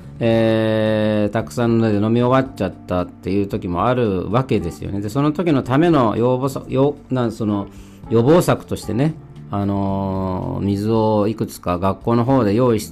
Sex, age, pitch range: male, 40-59, 95-125 Hz